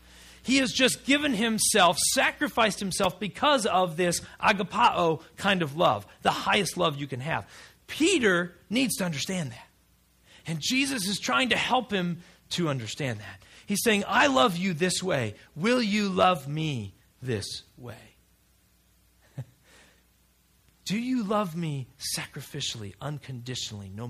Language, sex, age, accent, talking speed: English, male, 40-59, American, 135 wpm